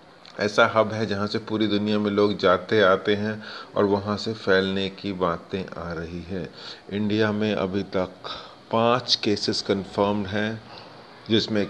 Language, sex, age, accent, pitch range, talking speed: Hindi, male, 40-59, native, 95-110 Hz, 155 wpm